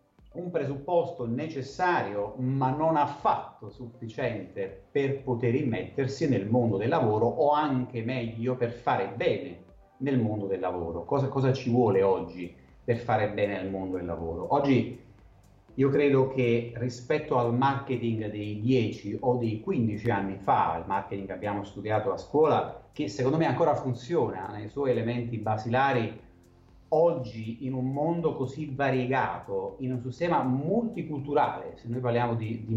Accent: native